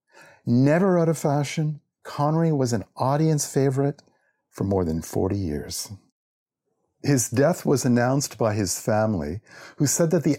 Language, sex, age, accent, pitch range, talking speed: English, male, 50-69, American, 100-145 Hz, 145 wpm